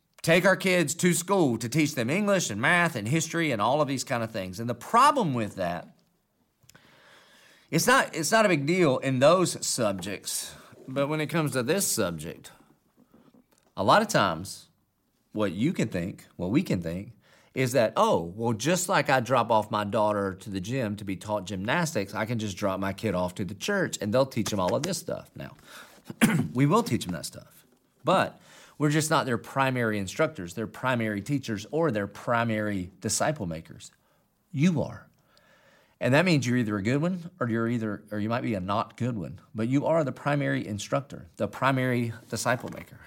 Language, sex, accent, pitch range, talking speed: English, male, American, 105-150 Hz, 200 wpm